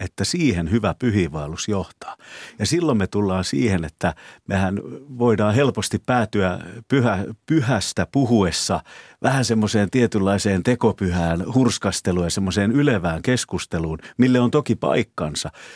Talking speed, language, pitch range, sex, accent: 115 wpm, Finnish, 90-115 Hz, male, native